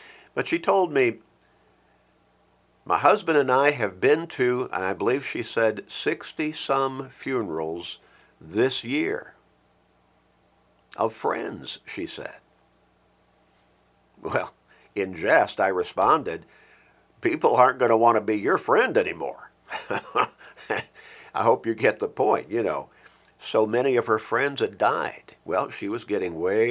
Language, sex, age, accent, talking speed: English, male, 50-69, American, 135 wpm